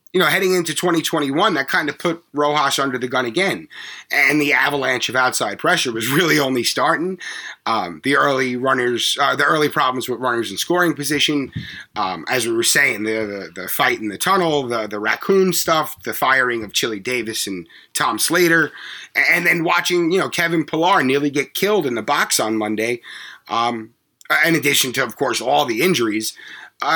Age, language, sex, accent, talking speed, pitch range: 30-49, English, male, American, 190 wpm, 130-175 Hz